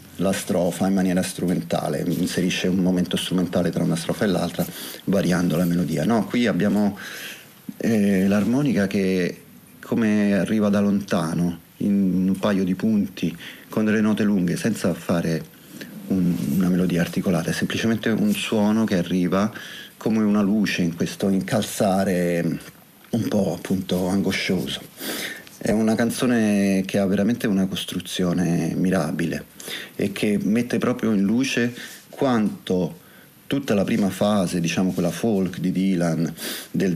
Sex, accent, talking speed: male, native, 135 wpm